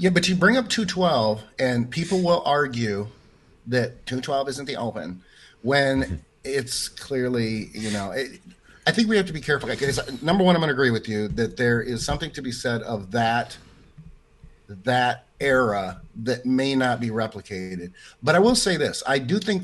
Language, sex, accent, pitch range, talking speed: English, male, American, 115-145 Hz, 190 wpm